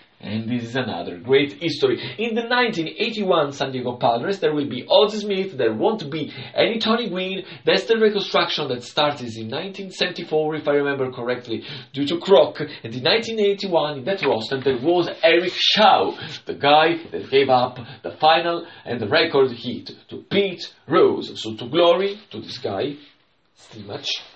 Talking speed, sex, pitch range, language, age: 170 wpm, male, 120-180 Hz, English, 40-59